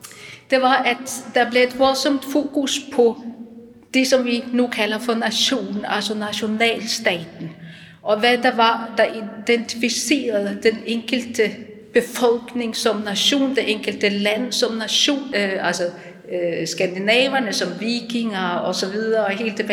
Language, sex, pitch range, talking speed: Danish, female, 195-245 Hz, 135 wpm